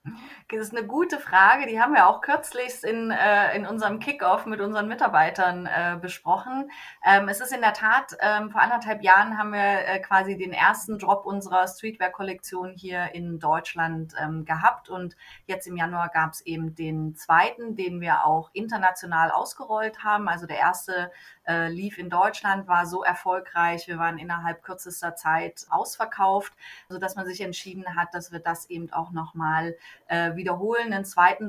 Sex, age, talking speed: female, 30-49, 170 wpm